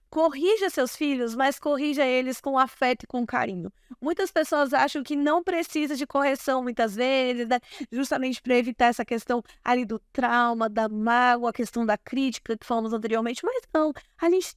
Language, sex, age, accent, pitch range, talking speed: Portuguese, female, 10-29, Brazilian, 225-285 Hz, 175 wpm